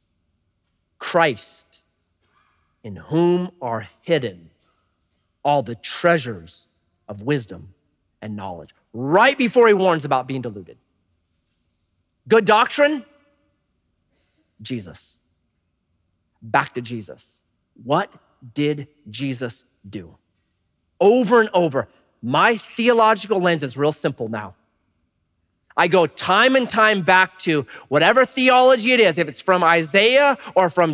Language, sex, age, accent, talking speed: English, male, 30-49, American, 110 wpm